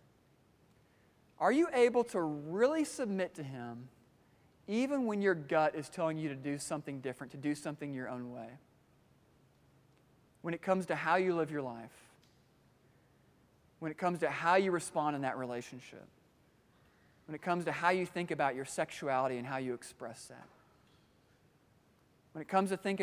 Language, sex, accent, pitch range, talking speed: English, male, American, 145-195 Hz, 165 wpm